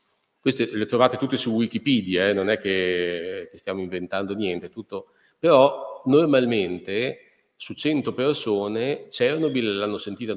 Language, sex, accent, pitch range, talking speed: Italian, male, native, 95-120 Hz, 140 wpm